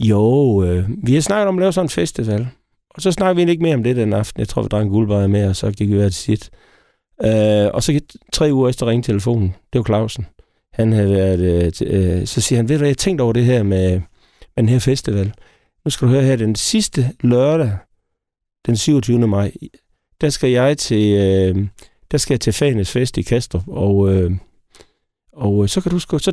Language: Danish